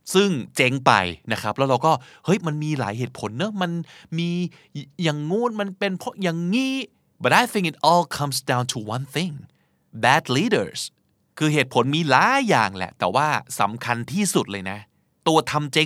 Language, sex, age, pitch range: Thai, male, 20-39, 115-160 Hz